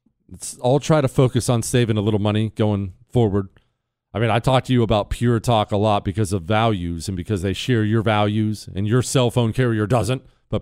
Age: 40-59